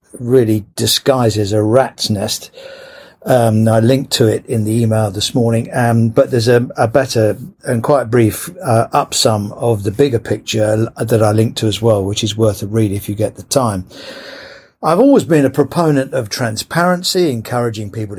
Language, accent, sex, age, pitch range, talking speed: English, British, male, 50-69, 110-135 Hz, 185 wpm